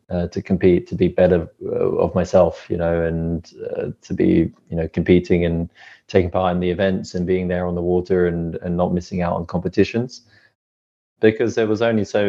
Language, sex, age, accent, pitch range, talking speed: English, male, 20-39, British, 90-100 Hz, 205 wpm